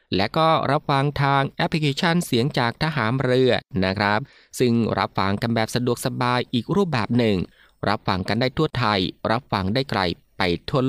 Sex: male